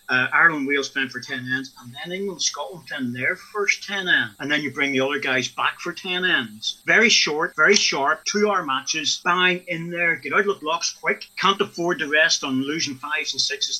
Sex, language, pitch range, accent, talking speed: male, English, 130-175 Hz, British, 225 wpm